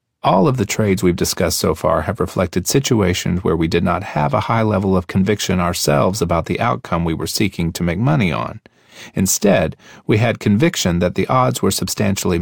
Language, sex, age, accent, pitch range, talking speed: English, male, 40-59, American, 85-115 Hz, 200 wpm